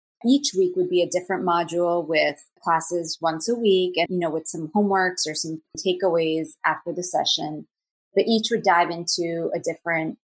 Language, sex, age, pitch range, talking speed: English, female, 30-49, 165-190 Hz, 180 wpm